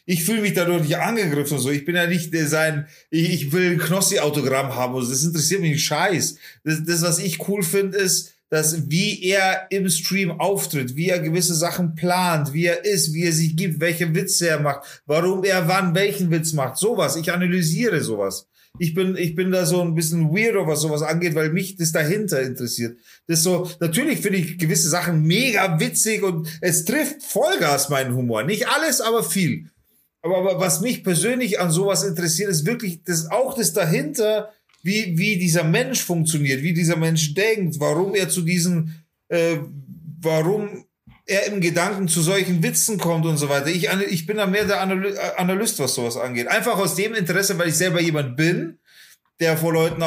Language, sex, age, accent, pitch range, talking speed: German, male, 30-49, German, 160-190 Hz, 190 wpm